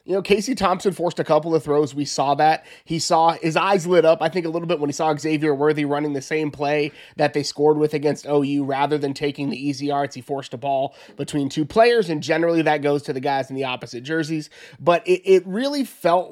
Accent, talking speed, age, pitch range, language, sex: American, 245 wpm, 20-39, 150-190 Hz, English, male